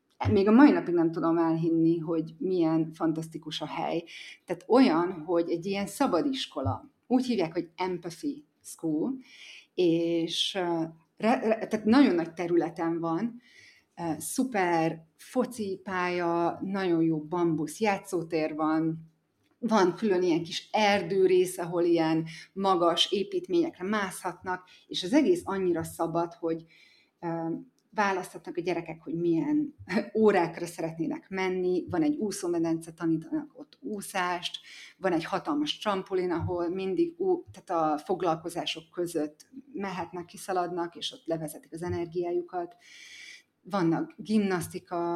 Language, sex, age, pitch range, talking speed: Hungarian, female, 30-49, 165-215 Hz, 115 wpm